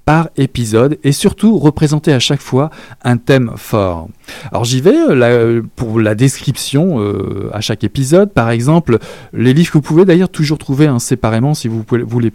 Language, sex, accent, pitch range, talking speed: French, male, French, 115-150 Hz, 185 wpm